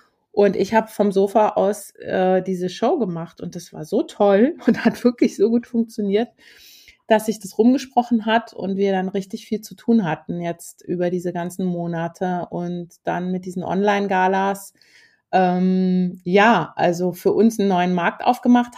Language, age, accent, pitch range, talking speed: German, 30-49, German, 185-220 Hz, 165 wpm